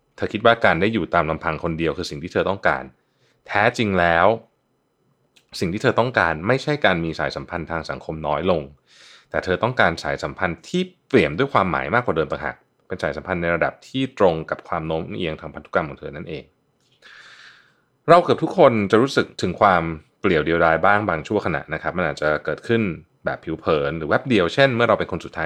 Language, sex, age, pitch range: Thai, male, 20-39, 80-115 Hz